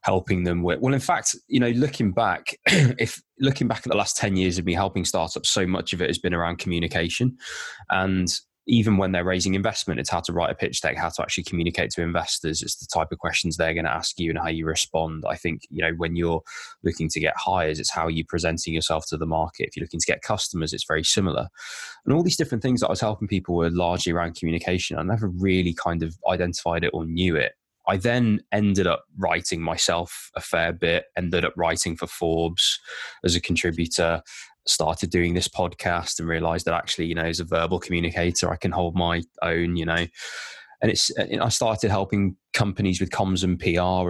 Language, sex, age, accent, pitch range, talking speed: English, male, 20-39, British, 85-95 Hz, 220 wpm